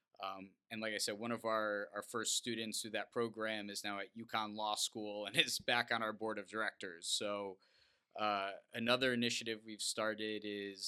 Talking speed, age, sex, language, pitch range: 195 wpm, 20-39, male, English, 105-120 Hz